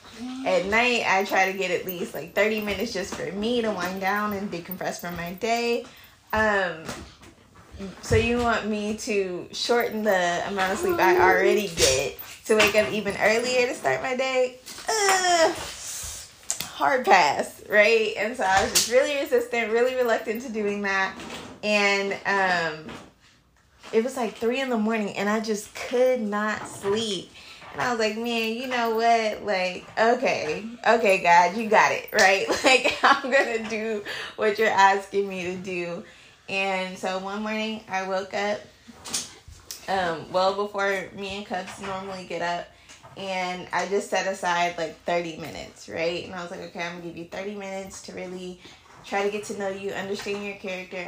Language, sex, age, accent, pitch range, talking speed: English, female, 20-39, American, 185-225 Hz, 175 wpm